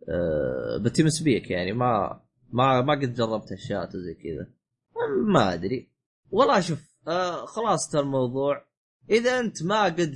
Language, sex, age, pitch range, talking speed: Arabic, male, 20-39, 125-175 Hz, 135 wpm